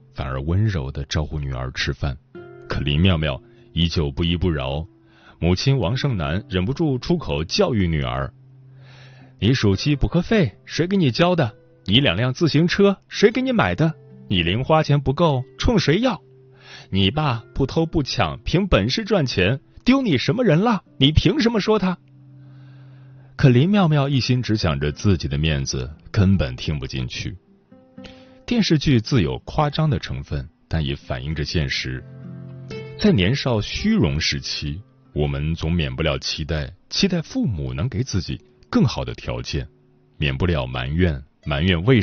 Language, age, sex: Chinese, 30-49, male